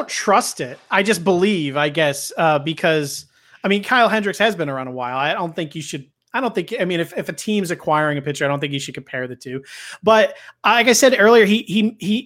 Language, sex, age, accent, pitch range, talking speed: English, male, 30-49, American, 145-185 Hz, 255 wpm